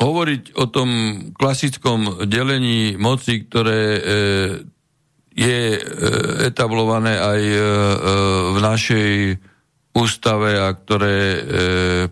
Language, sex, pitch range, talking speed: Slovak, male, 95-120 Hz, 80 wpm